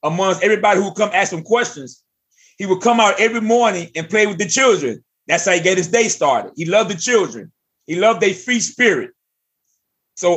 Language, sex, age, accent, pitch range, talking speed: English, male, 30-49, American, 180-225 Hz, 210 wpm